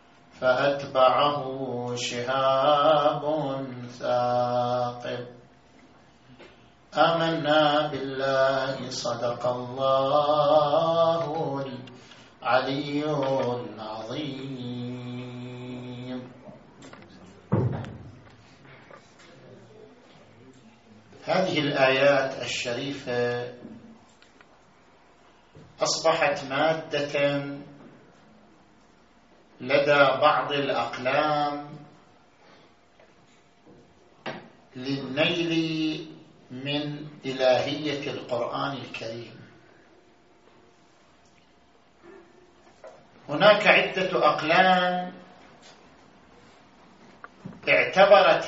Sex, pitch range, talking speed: male, 125-150 Hz, 30 wpm